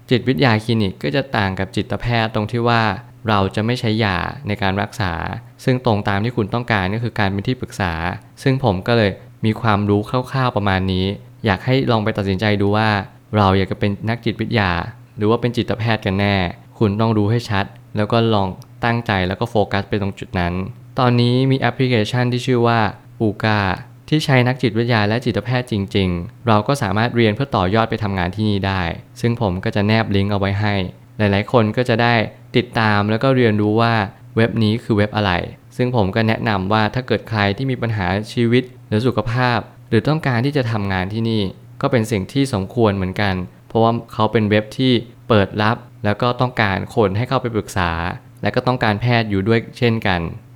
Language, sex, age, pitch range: Thai, male, 20-39, 100-120 Hz